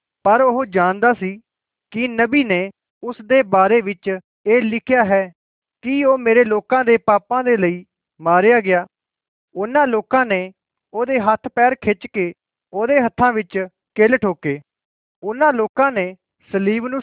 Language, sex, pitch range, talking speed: Malay, male, 185-240 Hz, 140 wpm